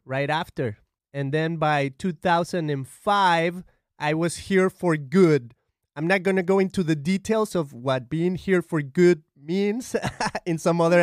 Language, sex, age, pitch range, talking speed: English, male, 30-49, 145-190 Hz, 160 wpm